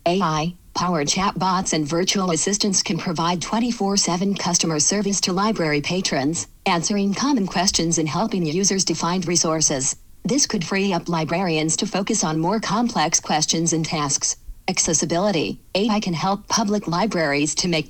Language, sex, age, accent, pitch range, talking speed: English, female, 50-69, American, 160-195 Hz, 145 wpm